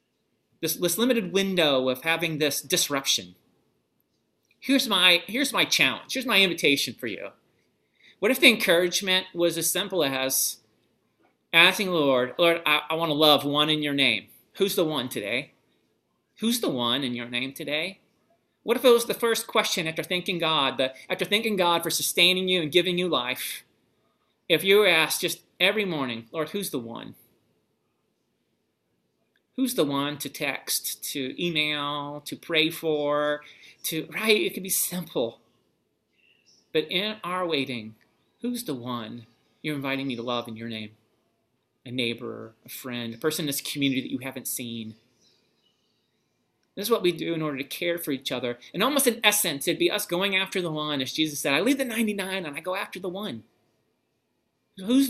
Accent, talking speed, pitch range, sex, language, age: American, 180 wpm, 135-185 Hz, male, English, 30-49